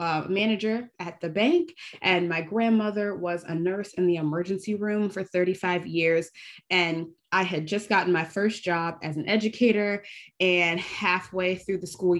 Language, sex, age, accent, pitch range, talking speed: English, female, 20-39, American, 165-190 Hz, 165 wpm